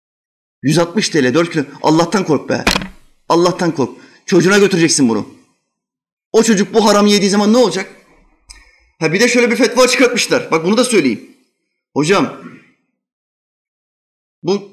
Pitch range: 155-205 Hz